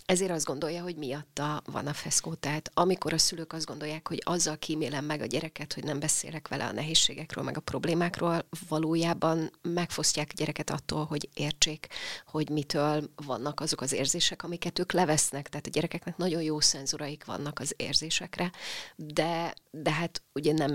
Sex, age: female, 30-49